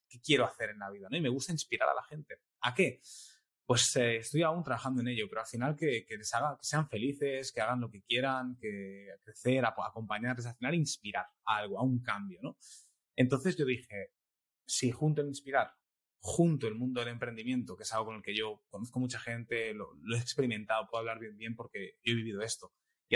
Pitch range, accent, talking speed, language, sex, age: 110-140 Hz, Spanish, 225 wpm, Spanish, male, 20-39